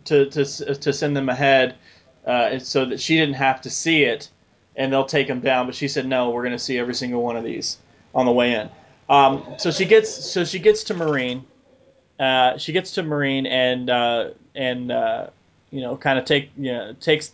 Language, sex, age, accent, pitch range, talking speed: English, male, 20-39, American, 125-155 Hz, 220 wpm